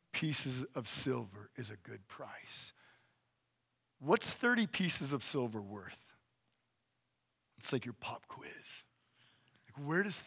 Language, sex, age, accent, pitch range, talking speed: English, male, 40-59, American, 120-170 Hz, 125 wpm